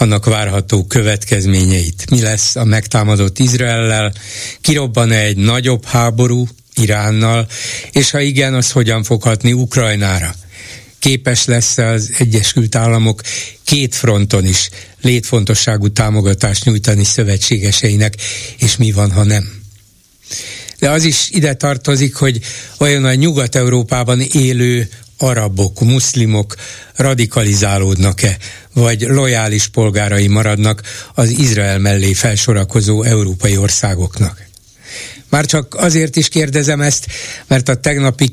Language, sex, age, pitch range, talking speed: Hungarian, male, 60-79, 105-125 Hz, 110 wpm